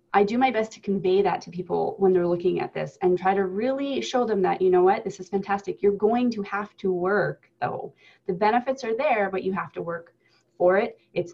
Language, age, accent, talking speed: English, 20-39, American, 245 wpm